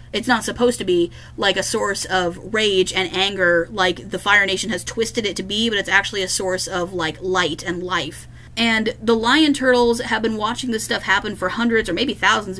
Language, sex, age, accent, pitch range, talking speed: English, female, 30-49, American, 185-230 Hz, 220 wpm